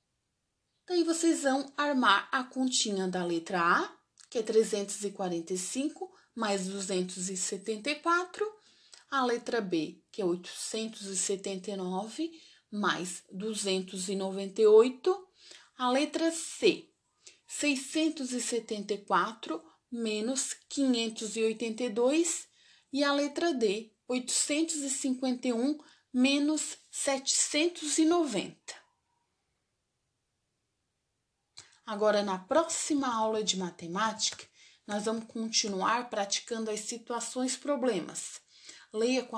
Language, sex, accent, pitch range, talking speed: Portuguese, female, Brazilian, 215-300 Hz, 75 wpm